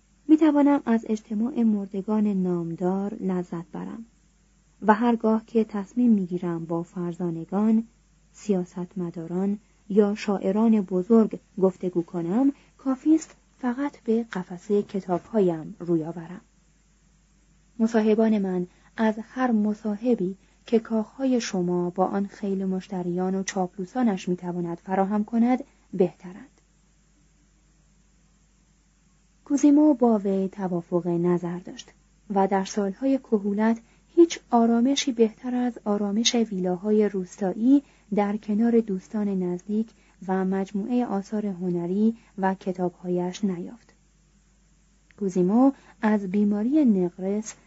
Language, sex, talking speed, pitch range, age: Persian, female, 100 wpm, 180-225 Hz, 30-49